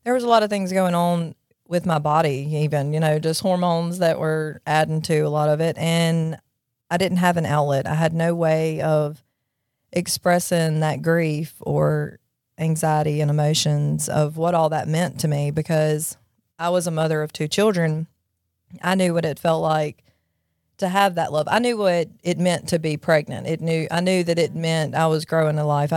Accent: American